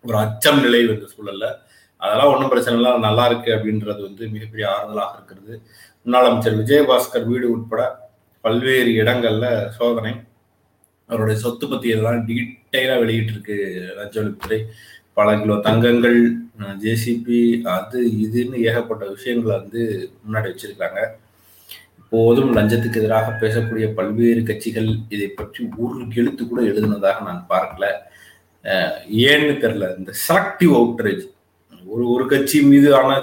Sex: male